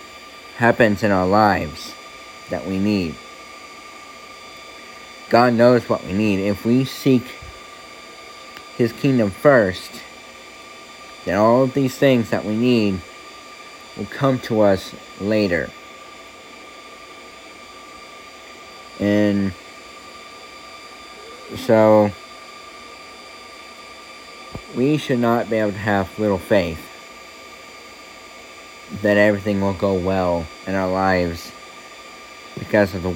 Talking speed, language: 95 wpm, English